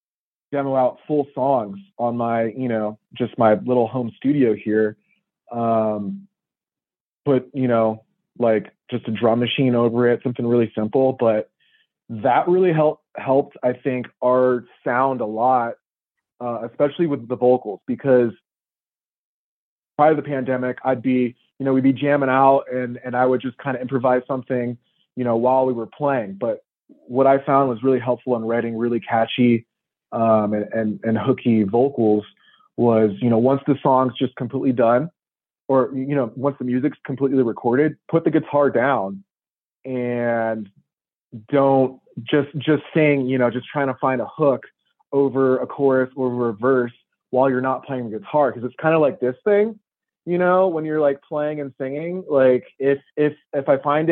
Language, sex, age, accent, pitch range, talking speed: English, male, 30-49, American, 120-140 Hz, 175 wpm